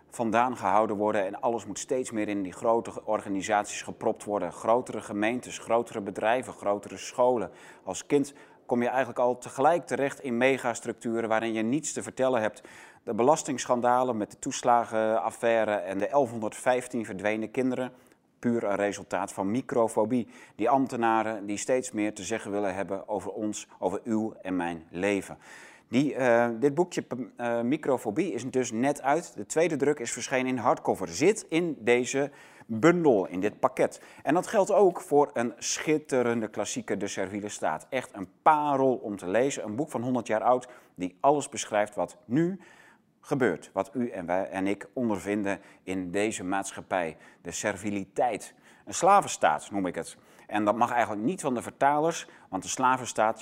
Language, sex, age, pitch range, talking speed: Dutch, male, 30-49, 105-130 Hz, 165 wpm